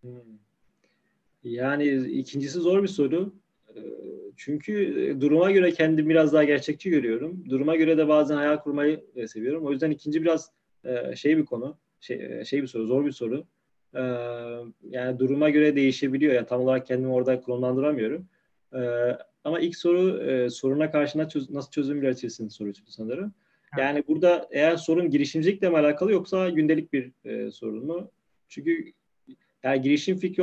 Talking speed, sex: 145 wpm, male